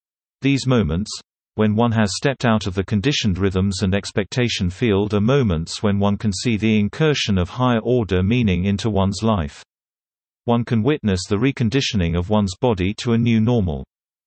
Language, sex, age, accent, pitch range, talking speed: English, male, 40-59, British, 95-120 Hz, 170 wpm